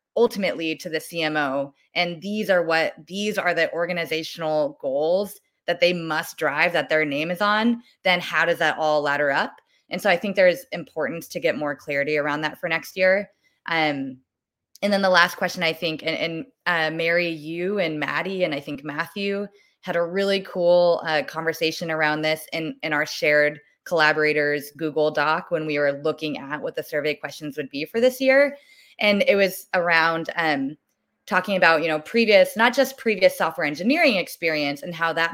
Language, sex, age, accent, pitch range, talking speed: English, female, 20-39, American, 155-195 Hz, 190 wpm